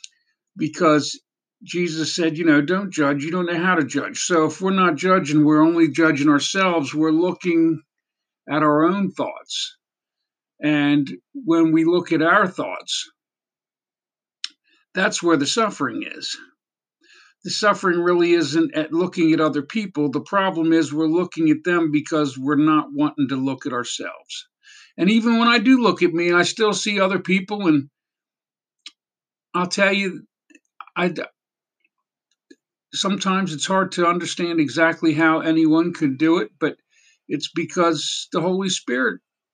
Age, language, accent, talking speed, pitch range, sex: 50-69, English, American, 150 wpm, 160-205 Hz, male